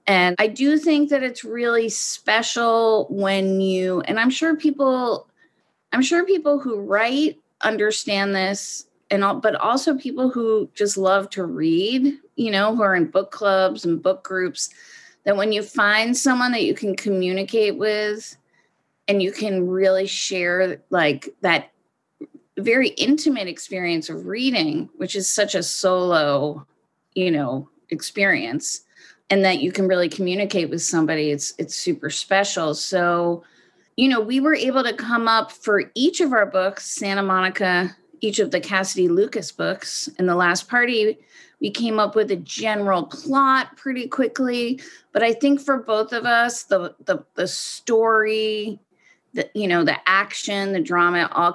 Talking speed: 160 wpm